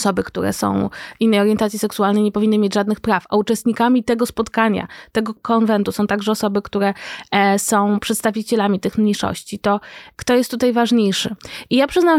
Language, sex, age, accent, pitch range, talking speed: Polish, female, 20-39, native, 205-250 Hz, 160 wpm